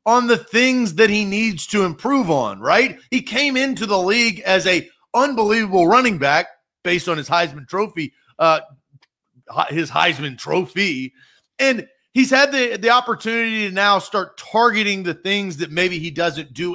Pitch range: 170-225 Hz